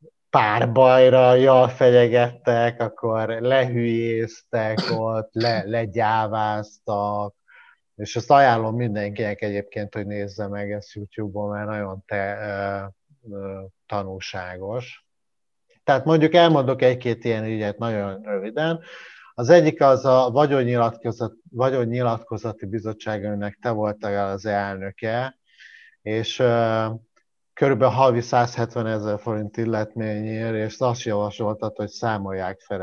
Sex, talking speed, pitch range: male, 105 wpm, 105-120 Hz